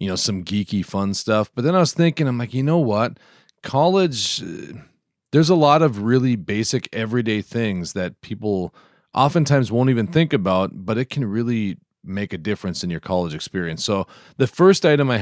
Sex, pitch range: male, 95-125 Hz